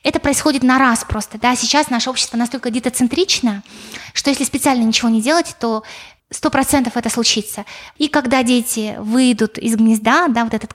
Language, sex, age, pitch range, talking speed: Russian, female, 20-39, 225-265 Hz, 175 wpm